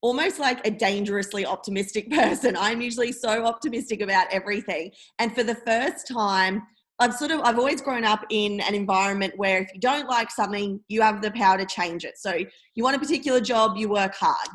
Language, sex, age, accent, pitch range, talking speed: English, female, 20-39, Australian, 195-235 Hz, 200 wpm